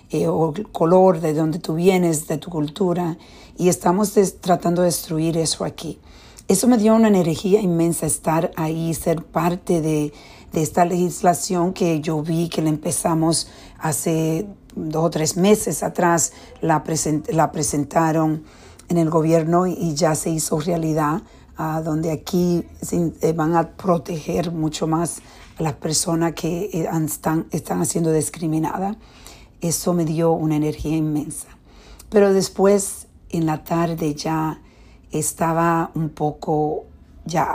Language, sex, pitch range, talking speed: Spanish, female, 155-175 Hz, 145 wpm